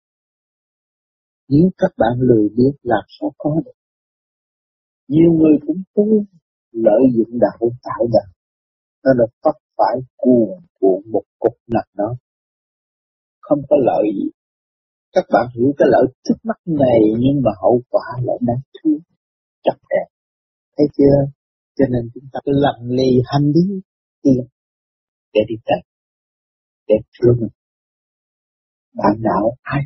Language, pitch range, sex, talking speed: Vietnamese, 120-180 Hz, male, 140 wpm